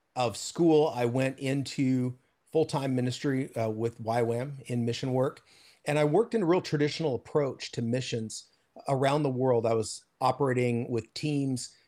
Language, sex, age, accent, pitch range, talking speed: English, male, 40-59, American, 120-150 Hz, 155 wpm